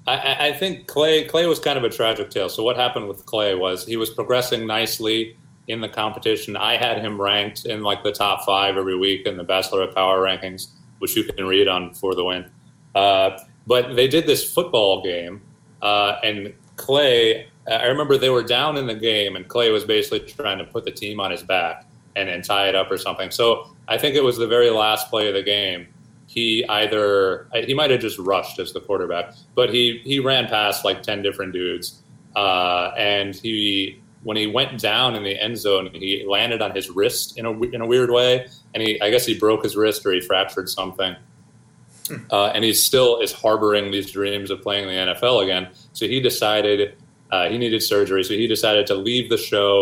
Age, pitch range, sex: 30-49, 100-125 Hz, male